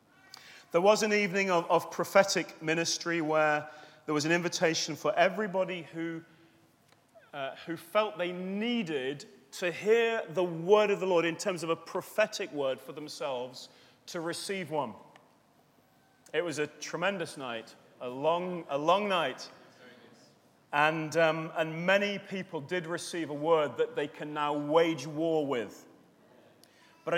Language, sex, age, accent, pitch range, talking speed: English, male, 30-49, British, 150-200 Hz, 145 wpm